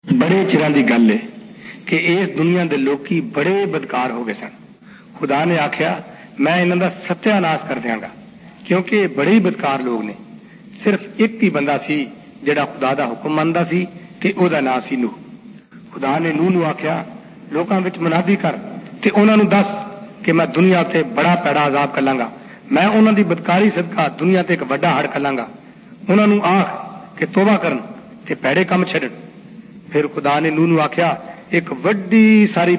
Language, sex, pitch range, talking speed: Arabic, male, 165-215 Hz, 150 wpm